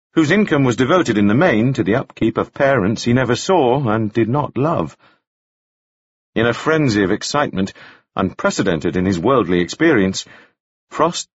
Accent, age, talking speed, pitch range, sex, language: British, 50-69, 160 wpm, 100-145 Hz, male, English